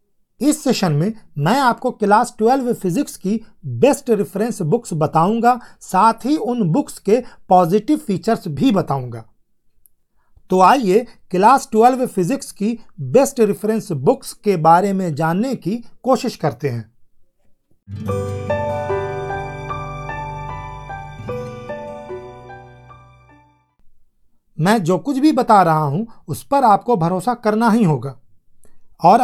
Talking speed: 110 wpm